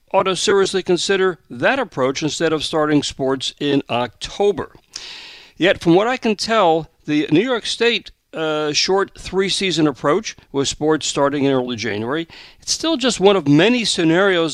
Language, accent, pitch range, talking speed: English, American, 140-185 Hz, 160 wpm